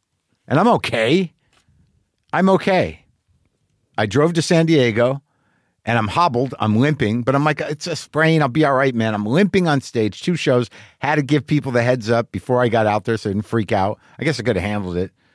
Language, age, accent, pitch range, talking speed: English, 50-69, American, 105-150 Hz, 220 wpm